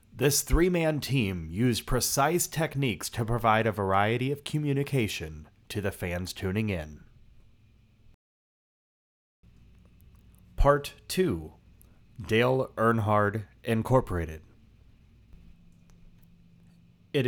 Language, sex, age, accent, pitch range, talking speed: English, male, 30-49, American, 95-130 Hz, 80 wpm